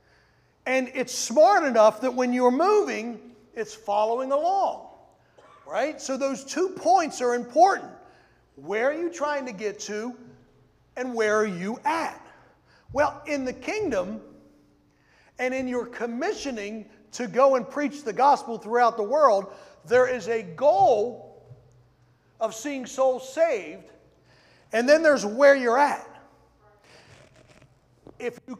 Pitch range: 215-290 Hz